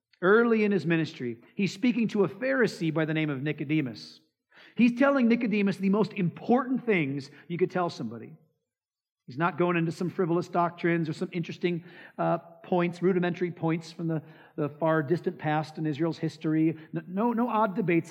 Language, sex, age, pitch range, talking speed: English, male, 40-59, 155-220 Hz, 175 wpm